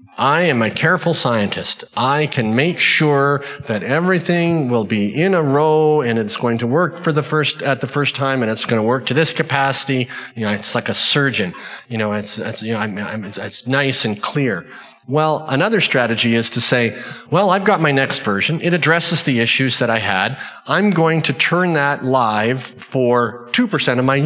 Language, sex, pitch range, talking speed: English, male, 125-165 Hz, 210 wpm